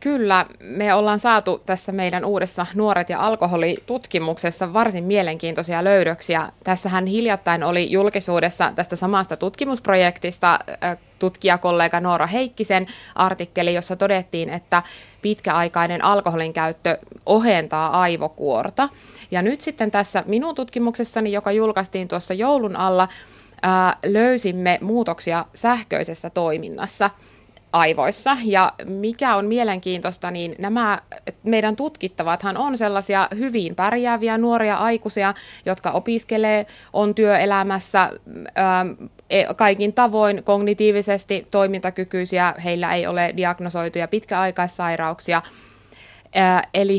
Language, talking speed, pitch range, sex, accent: Finnish, 95 wpm, 175-210 Hz, female, native